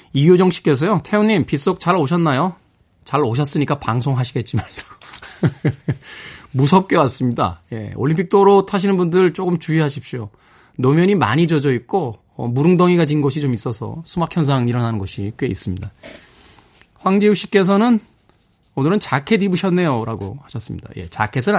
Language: Korean